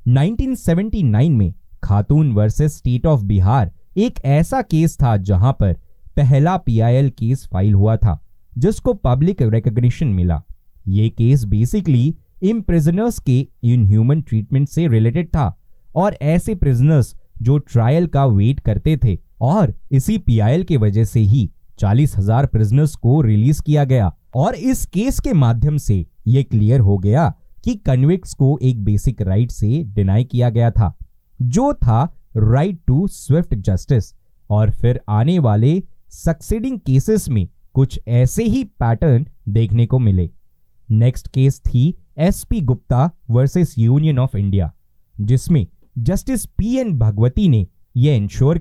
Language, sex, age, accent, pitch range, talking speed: Hindi, male, 20-39, native, 110-150 Hz, 145 wpm